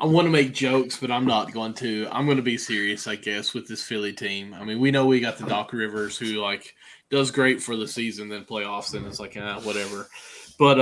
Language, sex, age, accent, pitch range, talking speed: English, male, 20-39, American, 115-140 Hz, 250 wpm